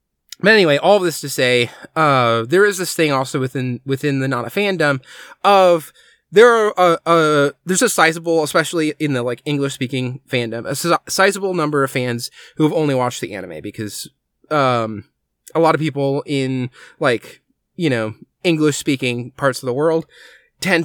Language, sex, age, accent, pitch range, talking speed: English, male, 20-39, American, 125-155 Hz, 175 wpm